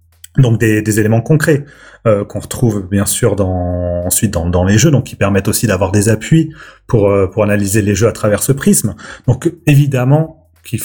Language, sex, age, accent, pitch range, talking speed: French, male, 30-49, French, 100-130 Hz, 200 wpm